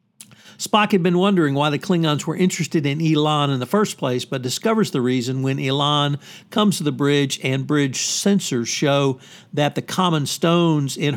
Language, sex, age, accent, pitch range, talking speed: English, male, 60-79, American, 135-170 Hz, 185 wpm